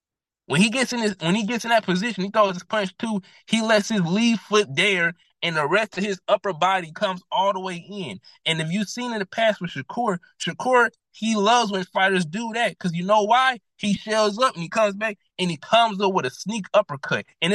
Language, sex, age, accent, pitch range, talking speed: English, male, 20-39, American, 170-215 Hz, 240 wpm